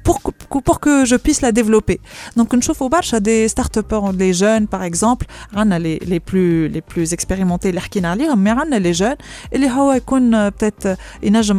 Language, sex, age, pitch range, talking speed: Arabic, female, 30-49, 190-245 Hz, 190 wpm